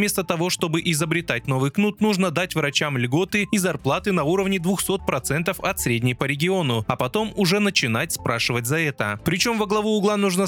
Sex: male